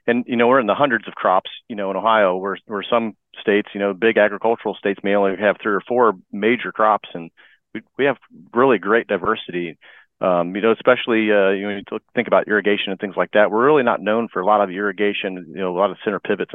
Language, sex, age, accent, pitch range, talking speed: English, male, 40-59, American, 95-110 Hz, 250 wpm